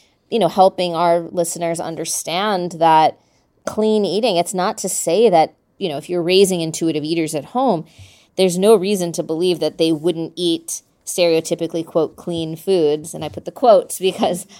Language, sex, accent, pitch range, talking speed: English, female, American, 165-195 Hz, 175 wpm